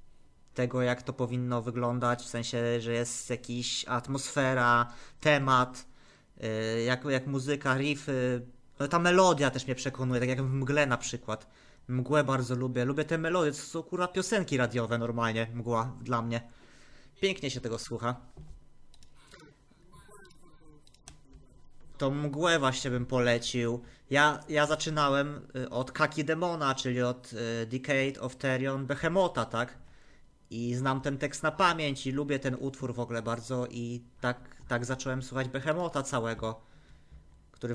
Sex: male